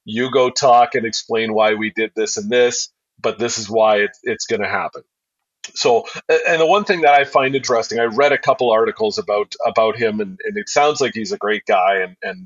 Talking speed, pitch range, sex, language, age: 230 wpm, 110-150 Hz, male, English, 40-59